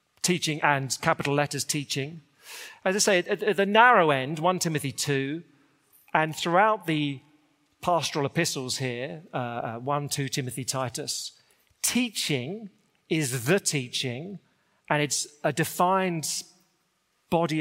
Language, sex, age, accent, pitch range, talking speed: English, male, 40-59, British, 140-185 Hz, 120 wpm